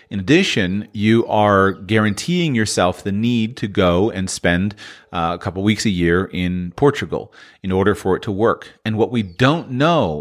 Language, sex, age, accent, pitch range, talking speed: English, male, 40-59, American, 100-130 Hz, 180 wpm